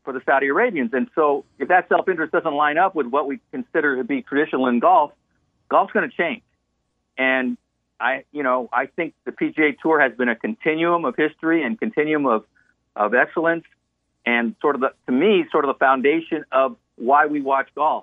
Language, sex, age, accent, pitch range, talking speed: English, male, 50-69, American, 115-160 Hz, 200 wpm